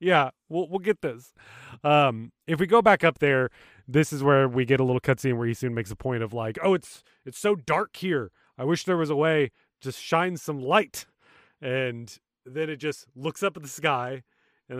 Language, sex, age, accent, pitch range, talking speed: English, male, 30-49, American, 125-180 Hz, 220 wpm